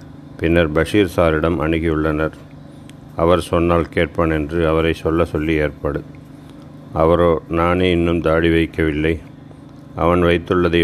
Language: Tamil